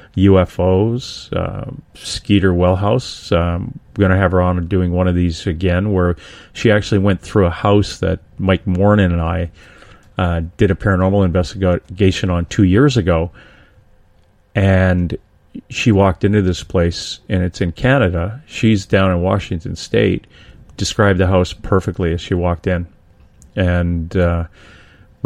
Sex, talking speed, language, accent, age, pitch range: male, 145 wpm, English, American, 30-49, 90-100 Hz